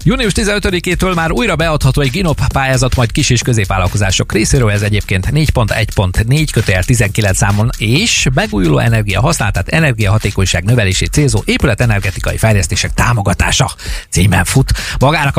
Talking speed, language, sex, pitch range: 120 wpm, Hungarian, male, 100-135 Hz